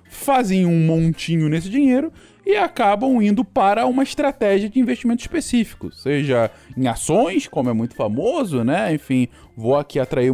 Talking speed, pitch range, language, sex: 150 wpm, 130-200 Hz, Portuguese, male